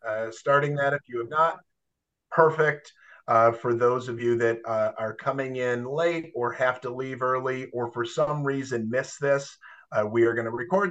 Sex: male